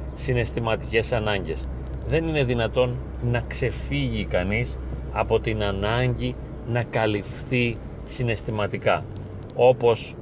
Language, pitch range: Greek, 105-130 Hz